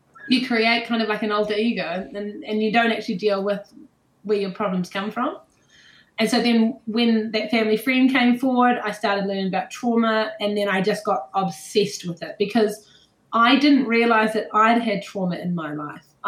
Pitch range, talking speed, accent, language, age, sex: 195-230 Hz, 195 wpm, Australian, English, 20-39, female